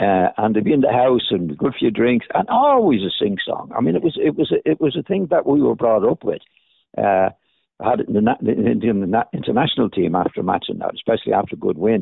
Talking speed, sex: 270 wpm, male